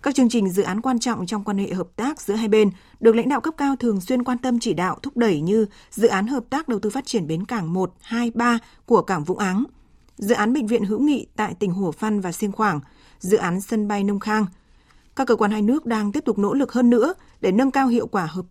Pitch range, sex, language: 200-240 Hz, female, Vietnamese